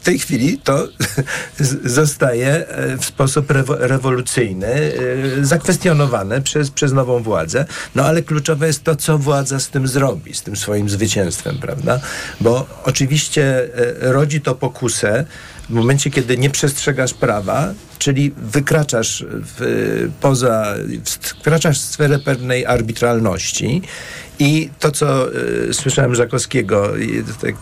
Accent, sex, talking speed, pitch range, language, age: native, male, 115 wpm, 120-150 Hz, Polish, 50-69